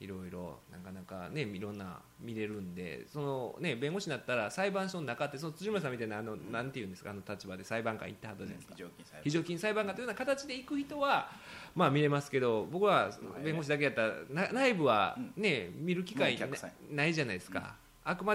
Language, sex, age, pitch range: Japanese, male, 20-39, 105-165 Hz